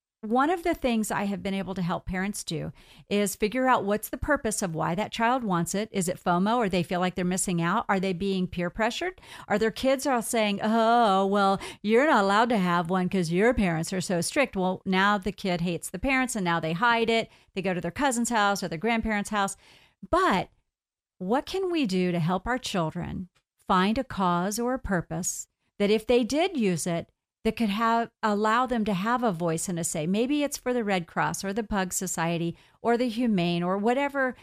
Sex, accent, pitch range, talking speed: female, American, 185-235 Hz, 225 wpm